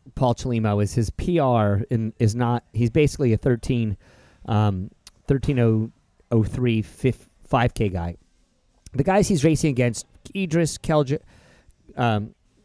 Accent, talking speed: American, 115 wpm